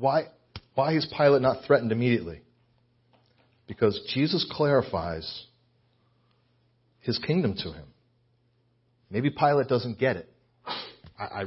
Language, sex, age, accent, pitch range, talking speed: English, male, 40-59, American, 110-120 Hz, 110 wpm